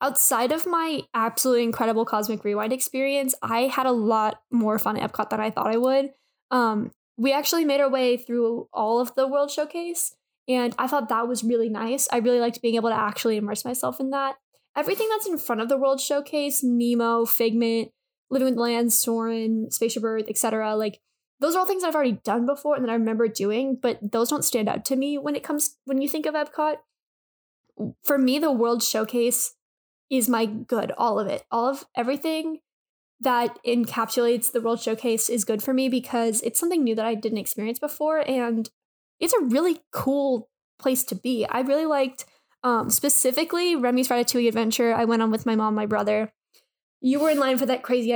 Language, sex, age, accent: English, female, 10-29, American